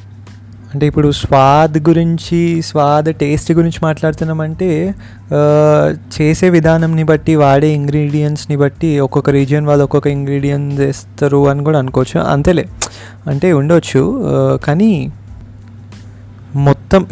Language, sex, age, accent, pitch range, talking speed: Telugu, male, 20-39, native, 120-150 Hz, 90 wpm